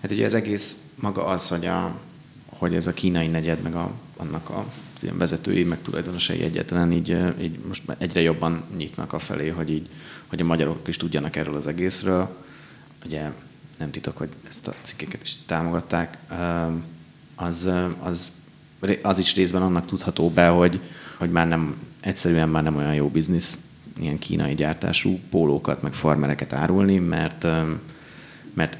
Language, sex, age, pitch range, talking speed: Hungarian, male, 30-49, 80-90 Hz, 160 wpm